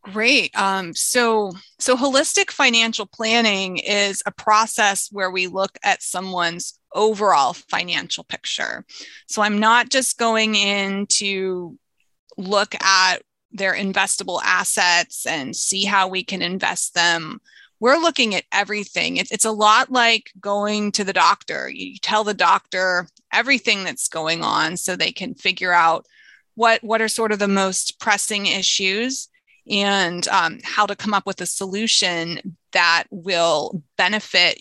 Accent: American